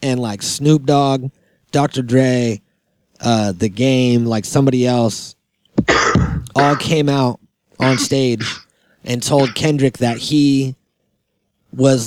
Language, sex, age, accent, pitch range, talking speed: English, male, 30-49, American, 120-140 Hz, 115 wpm